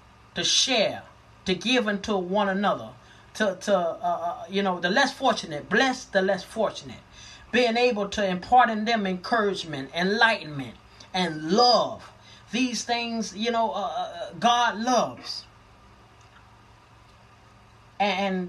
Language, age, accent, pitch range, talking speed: English, 30-49, American, 180-235 Hz, 120 wpm